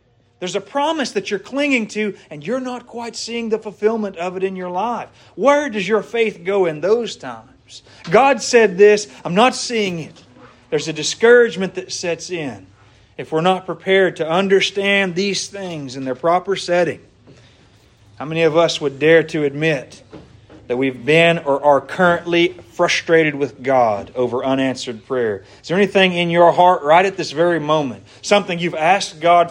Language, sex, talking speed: English, male, 175 wpm